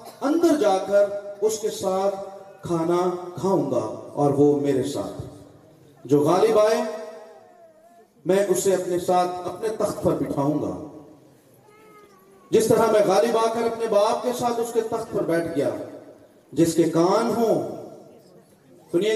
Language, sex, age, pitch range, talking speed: Urdu, male, 40-59, 170-230 Hz, 145 wpm